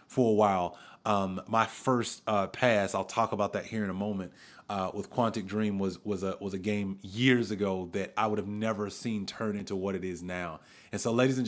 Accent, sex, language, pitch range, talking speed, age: American, male, English, 105-135 Hz, 220 wpm, 30-49